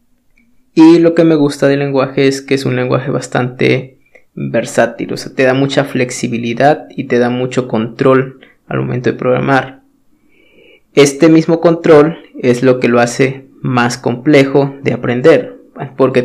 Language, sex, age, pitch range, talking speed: Spanish, male, 20-39, 130-160 Hz, 155 wpm